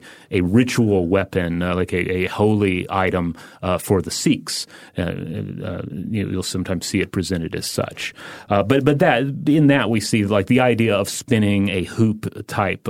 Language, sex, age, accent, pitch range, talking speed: English, male, 30-49, American, 100-125 Hz, 175 wpm